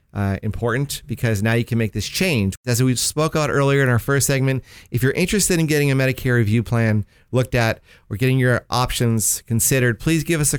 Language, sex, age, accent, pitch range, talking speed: English, male, 40-59, American, 115-145 Hz, 215 wpm